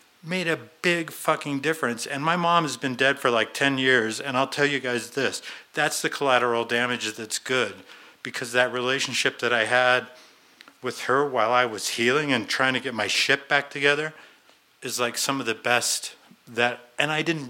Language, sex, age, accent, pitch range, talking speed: English, male, 50-69, American, 125-160 Hz, 195 wpm